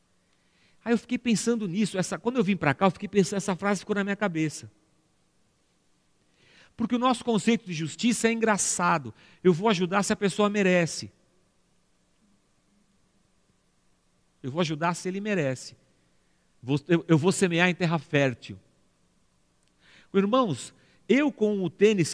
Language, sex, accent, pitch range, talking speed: Portuguese, male, Brazilian, 155-230 Hz, 140 wpm